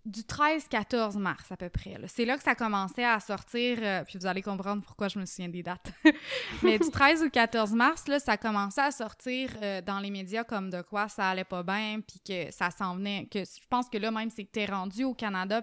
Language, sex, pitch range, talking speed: French, female, 195-250 Hz, 240 wpm